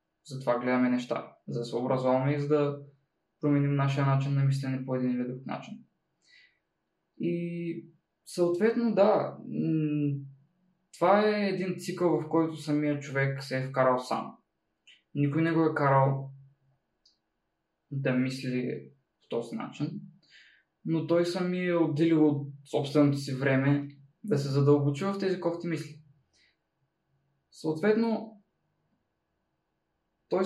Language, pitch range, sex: Bulgarian, 135-170 Hz, male